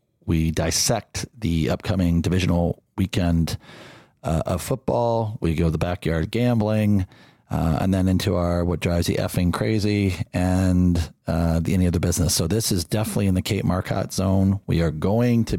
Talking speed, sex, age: 170 wpm, male, 40-59